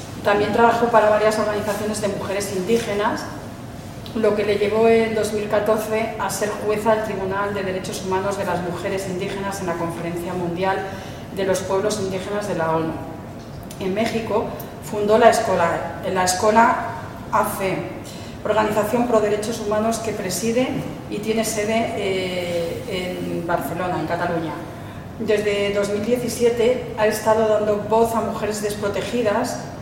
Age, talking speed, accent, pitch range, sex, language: 40-59, 135 wpm, Spanish, 185-215 Hz, female, English